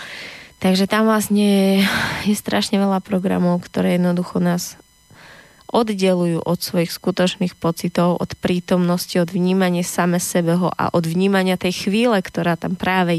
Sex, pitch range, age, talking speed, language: female, 180-215 Hz, 20-39, 130 wpm, Slovak